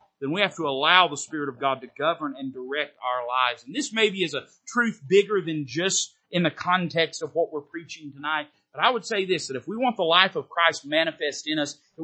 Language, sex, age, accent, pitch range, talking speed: English, male, 40-59, American, 145-220 Hz, 245 wpm